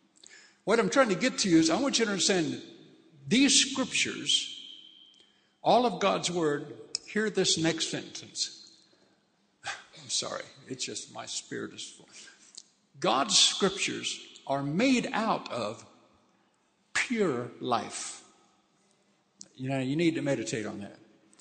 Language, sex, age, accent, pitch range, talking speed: English, male, 60-79, American, 140-205 Hz, 130 wpm